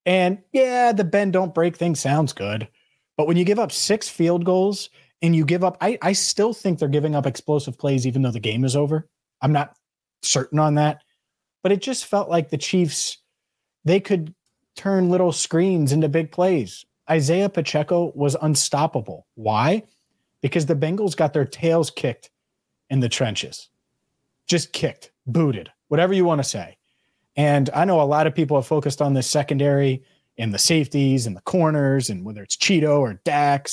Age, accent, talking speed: 30-49, American, 185 wpm